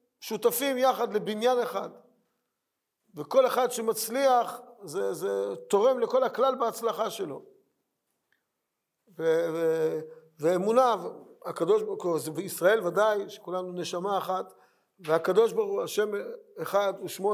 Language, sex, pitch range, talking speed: Hebrew, male, 205-285 Hz, 110 wpm